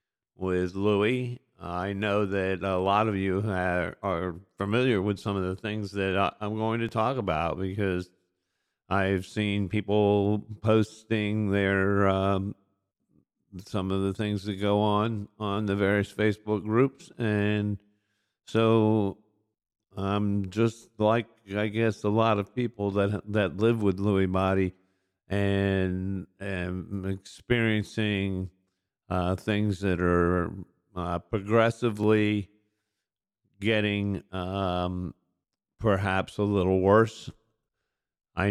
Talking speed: 120 wpm